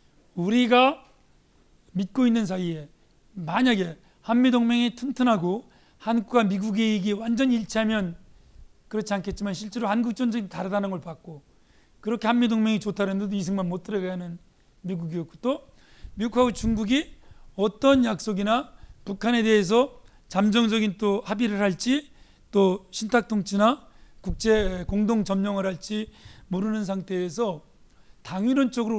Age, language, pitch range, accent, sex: 40-59, Korean, 185-225 Hz, native, male